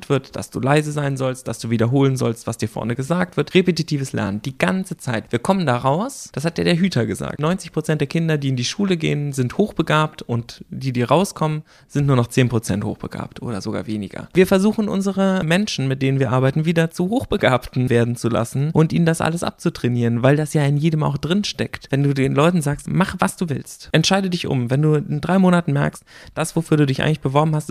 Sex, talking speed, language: male, 225 wpm, German